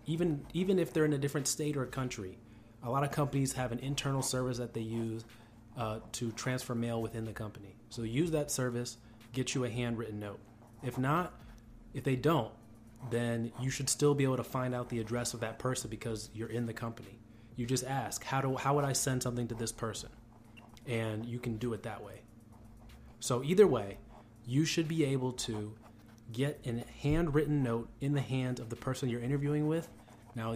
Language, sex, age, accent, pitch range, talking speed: English, male, 30-49, American, 115-135 Hz, 200 wpm